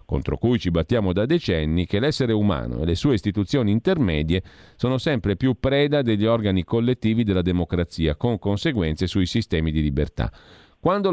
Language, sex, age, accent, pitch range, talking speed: Italian, male, 40-59, native, 85-120 Hz, 160 wpm